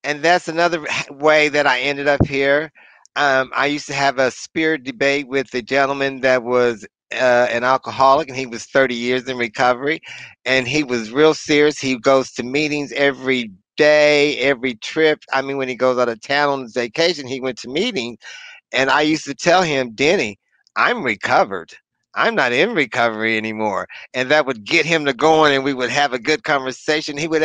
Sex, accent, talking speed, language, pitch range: male, American, 195 wpm, English, 130-155 Hz